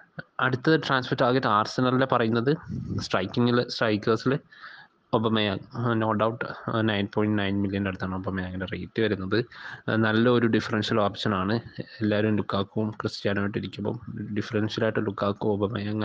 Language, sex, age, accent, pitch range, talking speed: Malayalam, male, 20-39, native, 105-120 Hz, 110 wpm